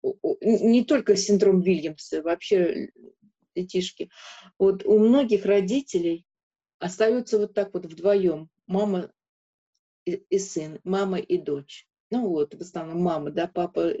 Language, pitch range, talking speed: Russian, 175-215 Hz, 120 wpm